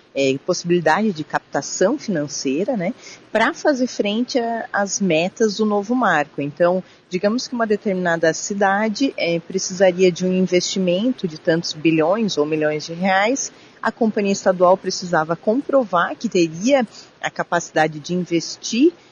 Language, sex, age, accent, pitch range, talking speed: Portuguese, female, 40-59, Brazilian, 165-215 Hz, 135 wpm